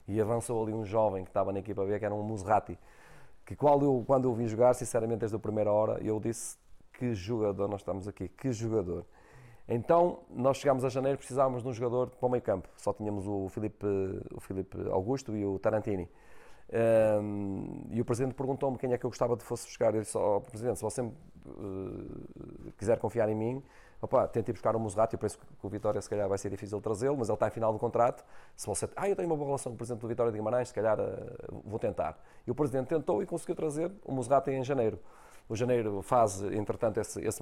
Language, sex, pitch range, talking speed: Portuguese, male, 105-130 Hz, 230 wpm